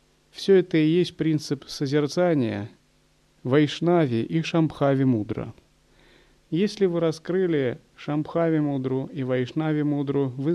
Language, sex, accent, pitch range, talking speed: Russian, male, native, 135-175 Hz, 110 wpm